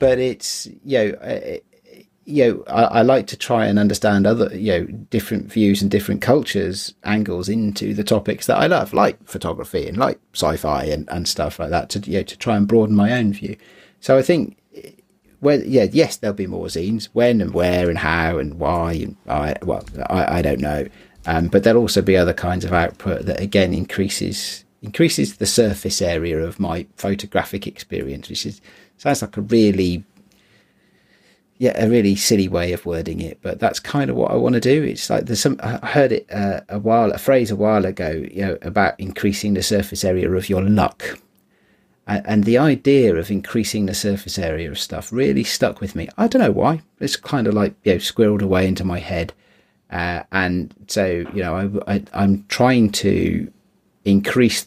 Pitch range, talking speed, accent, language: 90-110 Hz, 200 wpm, British, English